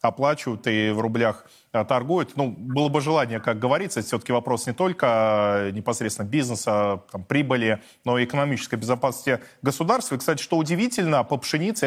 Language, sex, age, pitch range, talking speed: Russian, male, 20-39, 115-155 Hz, 155 wpm